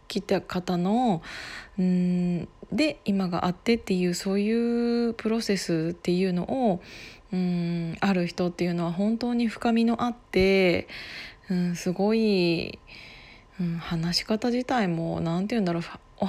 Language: Japanese